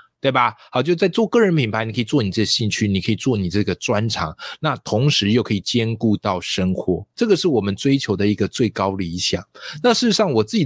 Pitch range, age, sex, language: 100-145 Hz, 20-39, male, Chinese